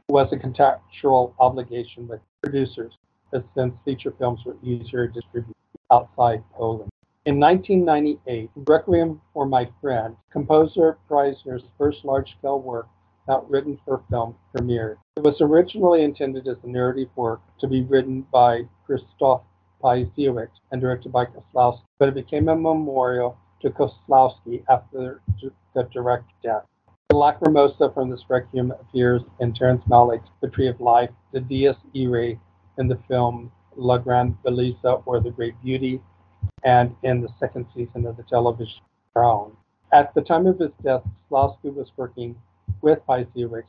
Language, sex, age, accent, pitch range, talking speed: English, male, 50-69, American, 115-135 Hz, 145 wpm